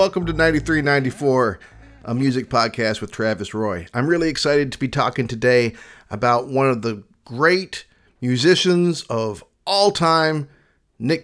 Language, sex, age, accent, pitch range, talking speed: English, male, 40-59, American, 110-140 Hz, 155 wpm